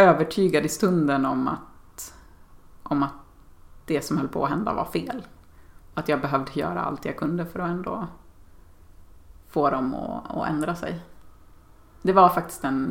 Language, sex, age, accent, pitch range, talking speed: English, female, 30-49, Swedish, 130-180 Hz, 165 wpm